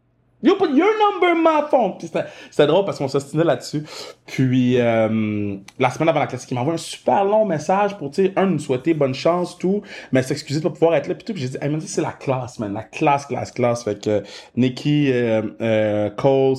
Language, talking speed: French, 240 wpm